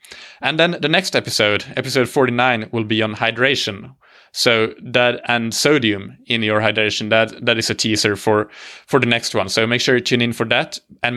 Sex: male